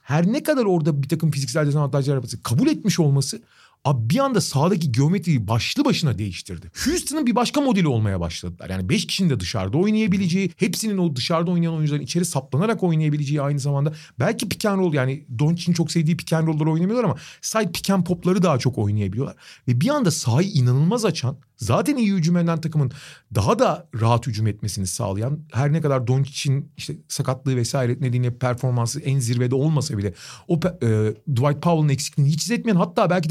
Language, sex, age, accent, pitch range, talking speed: Turkish, male, 40-59, native, 125-180 Hz, 175 wpm